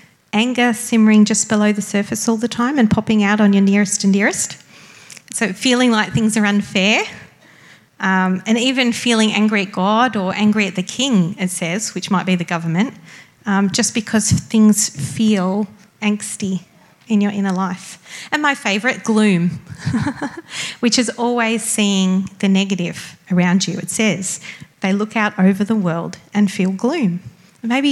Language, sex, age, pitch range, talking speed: English, female, 30-49, 185-220 Hz, 165 wpm